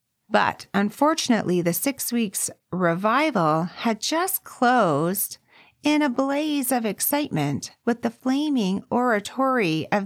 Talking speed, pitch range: 115 wpm, 175-250 Hz